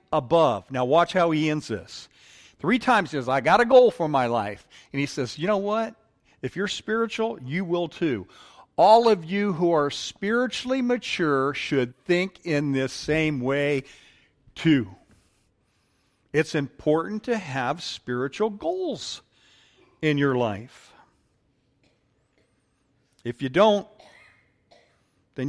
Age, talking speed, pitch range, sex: 50-69, 135 wpm, 135-200 Hz, male